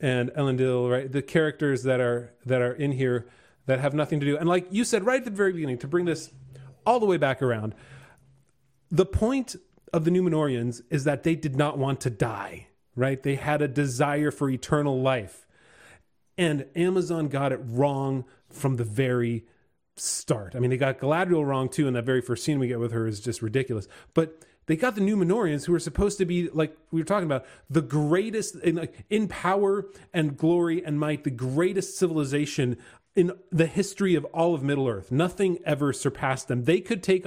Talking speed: 200 wpm